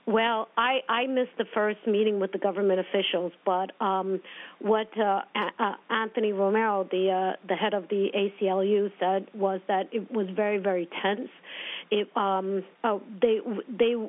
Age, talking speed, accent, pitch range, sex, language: 50-69, 145 wpm, American, 190-220 Hz, female, English